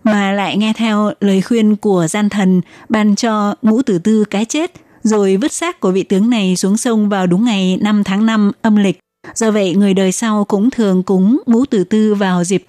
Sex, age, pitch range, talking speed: female, 20-39, 195-230 Hz, 220 wpm